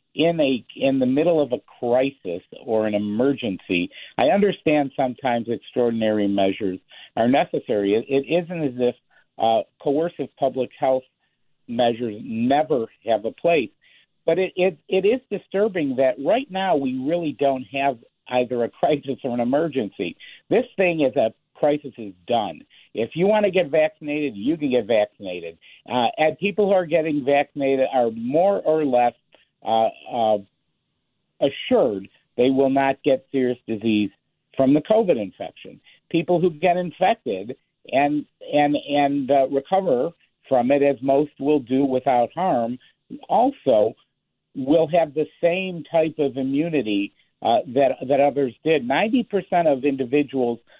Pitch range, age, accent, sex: 125-170 Hz, 50-69, American, male